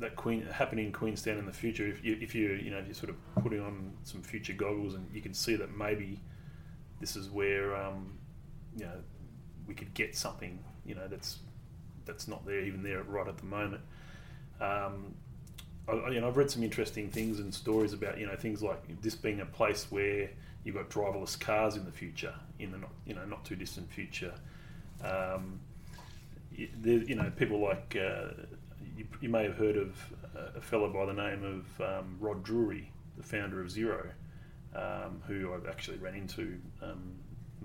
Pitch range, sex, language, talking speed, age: 95-110 Hz, male, English, 195 wpm, 30-49